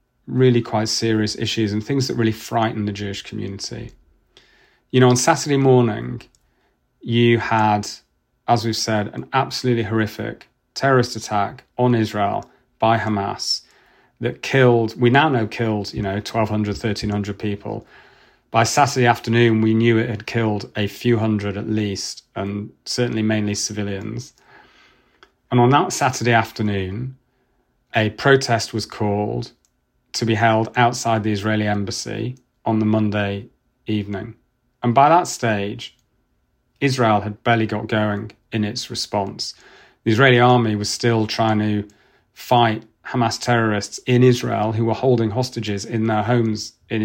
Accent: British